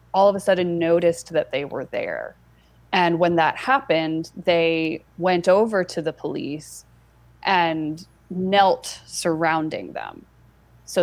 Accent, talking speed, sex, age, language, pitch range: American, 130 wpm, female, 20-39, English, 155-175 Hz